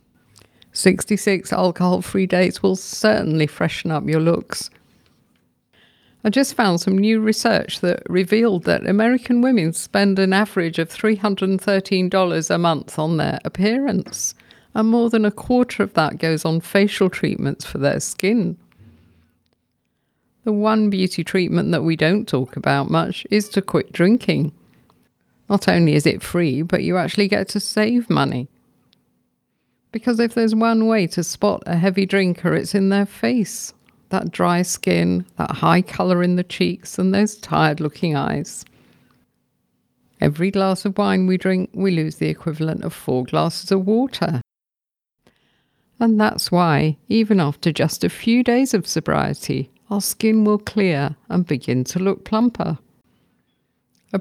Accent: British